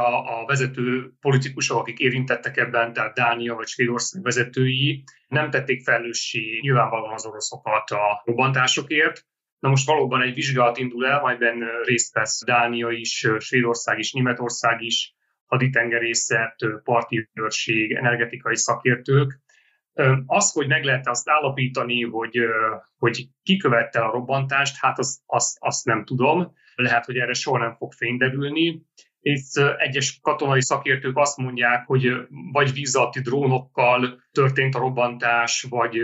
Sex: male